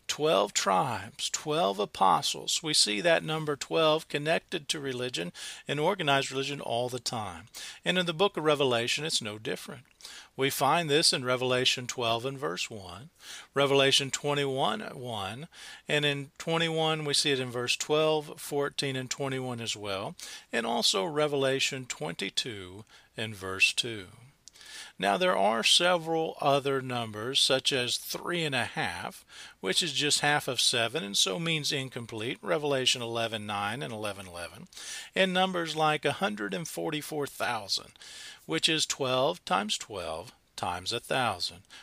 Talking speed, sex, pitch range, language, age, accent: 150 wpm, male, 120-155 Hz, English, 40-59, American